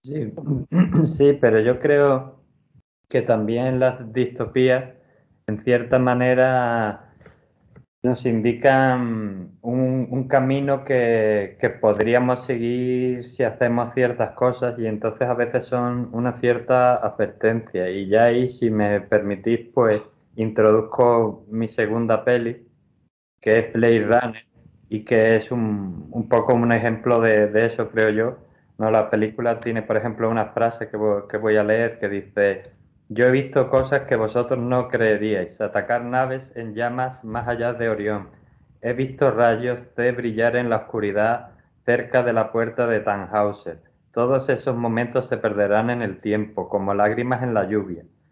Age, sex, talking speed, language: 20-39, male, 145 wpm, Spanish